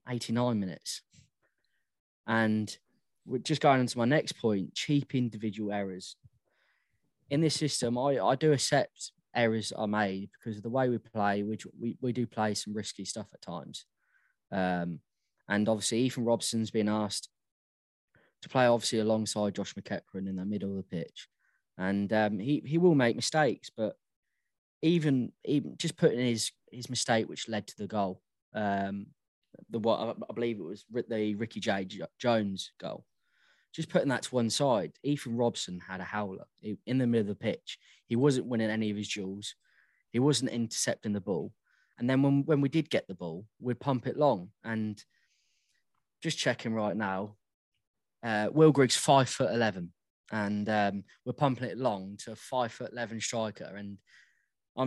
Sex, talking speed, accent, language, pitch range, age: male, 175 wpm, British, English, 100-130 Hz, 20-39